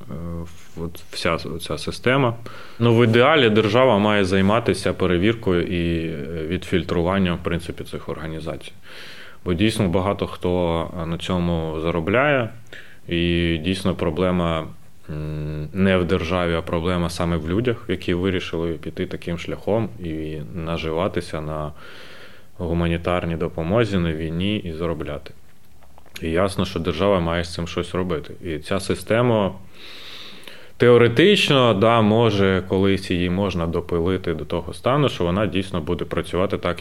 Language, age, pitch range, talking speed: Ukrainian, 20-39, 85-100 Hz, 125 wpm